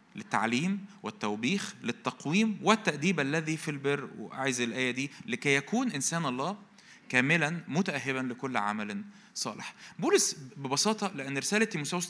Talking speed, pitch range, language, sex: 120 wpm, 140-205 Hz, Arabic, male